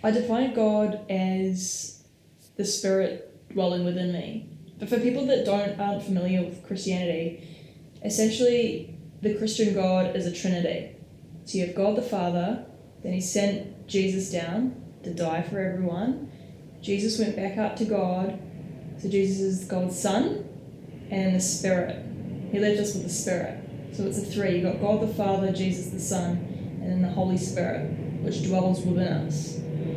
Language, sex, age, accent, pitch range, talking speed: English, female, 10-29, Australian, 165-200 Hz, 160 wpm